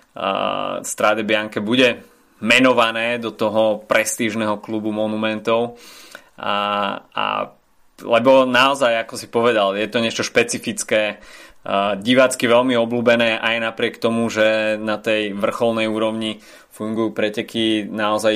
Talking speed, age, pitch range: 115 wpm, 20-39, 110-120 Hz